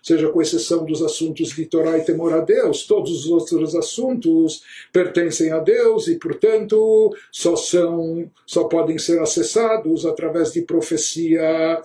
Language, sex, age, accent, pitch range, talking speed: Portuguese, male, 60-79, Brazilian, 165-230 Hz, 140 wpm